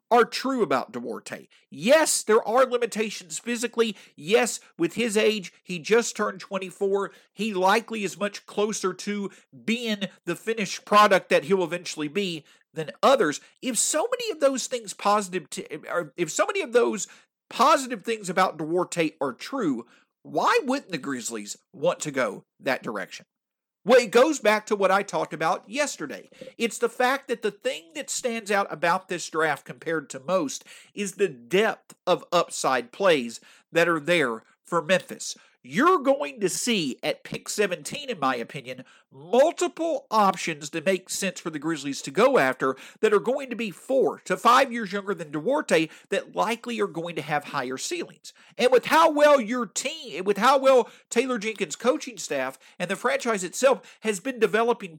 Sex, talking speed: male, 175 wpm